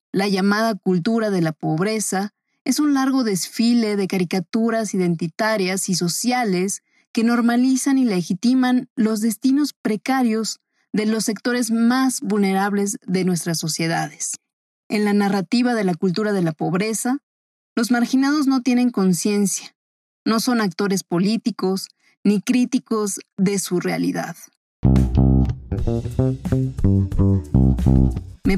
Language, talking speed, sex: Spanish, 115 wpm, female